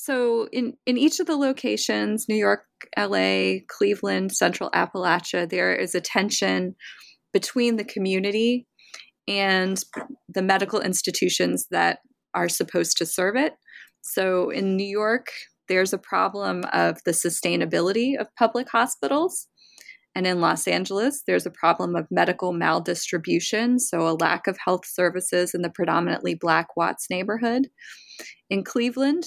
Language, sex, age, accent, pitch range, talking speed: English, female, 20-39, American, 170-230 Hz, 135 wpm